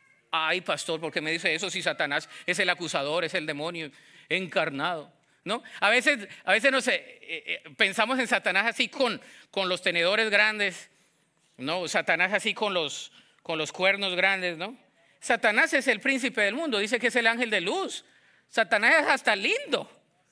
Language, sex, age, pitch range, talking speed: English, male, 40-59, 205-290 Hz, 175 wpm